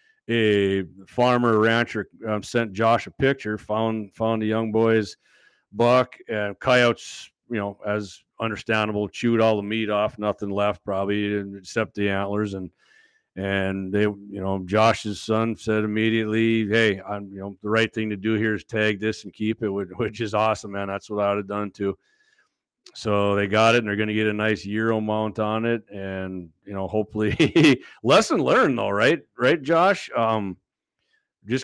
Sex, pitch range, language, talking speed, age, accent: male, 105-115 Hz, English, 180 wpm, 40-59, American